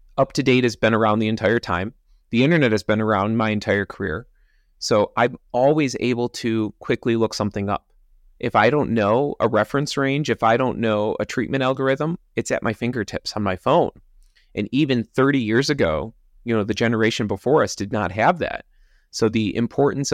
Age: 30-49